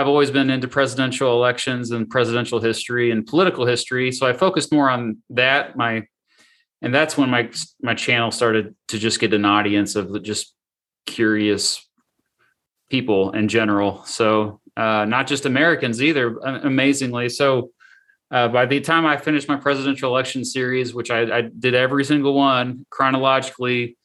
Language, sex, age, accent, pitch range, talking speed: English, male, 30-49, American, 120-145 Hz, 155 wpm